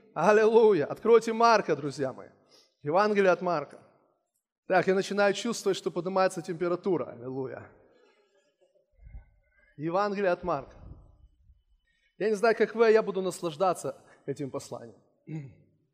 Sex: male